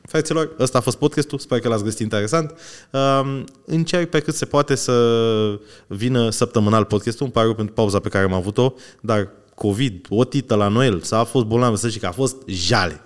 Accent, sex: native, male